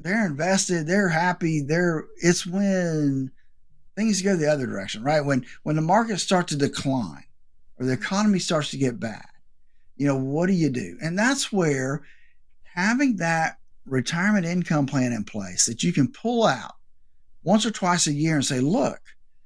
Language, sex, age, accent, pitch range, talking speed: English, male, 50-69, American, 130-185 Hz, 175 wpm